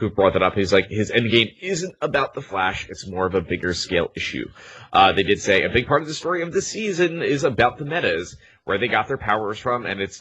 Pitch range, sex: 95-130 Hz, male